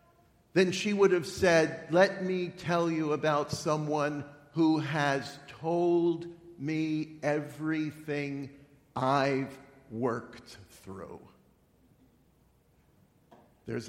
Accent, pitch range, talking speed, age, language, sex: American, 125-160 Hz, 85 wpm, 50-69, English, male